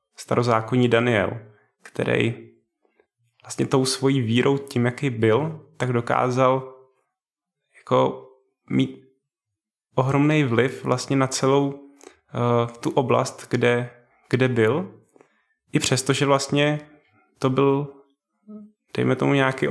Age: 20-39